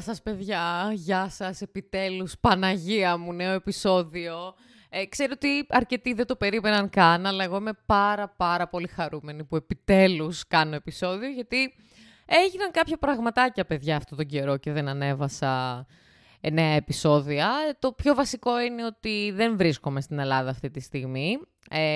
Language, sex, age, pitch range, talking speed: Greek, female, 20-39, 150-215 Hz, 155 wpm